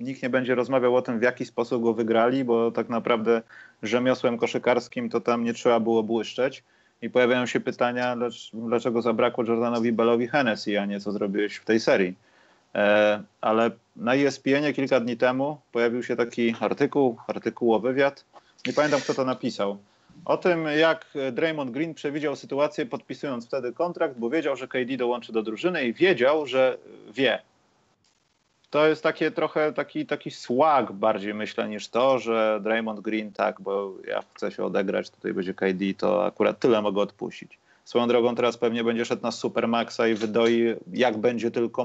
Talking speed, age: 170 wpm, 30-49